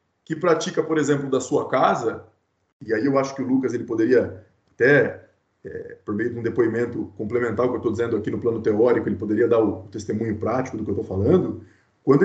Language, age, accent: Portuguese, 20-39, Brazilian